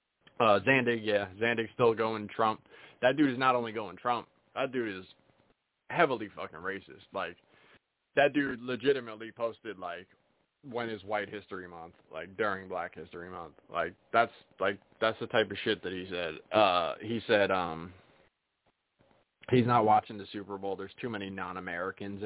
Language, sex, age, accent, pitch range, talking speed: English, male, 20-39, American, 105-140 Hz, 165 wpm